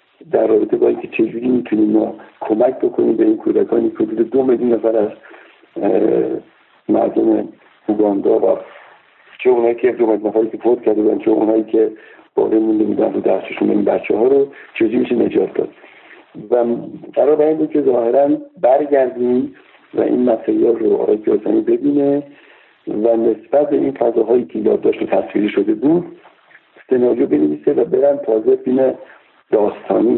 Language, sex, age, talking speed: Persian, male, 60-79, 155 wpm